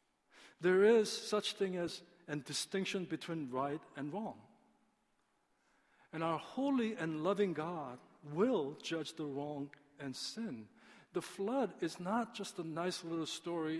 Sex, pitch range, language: male, 150-195 Hz, Korean